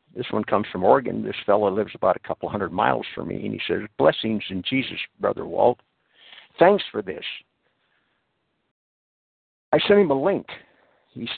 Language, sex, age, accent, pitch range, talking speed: English, male, 60-79, American, 110-150 Hz, 170 wpm